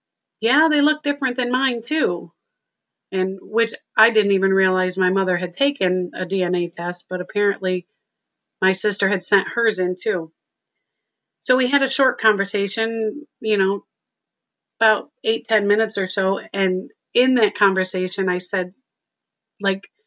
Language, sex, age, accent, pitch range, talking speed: English, female, 30-49, American, 185-220 Hz, 150 wpm